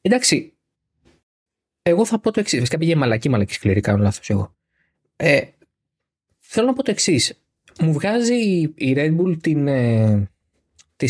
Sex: male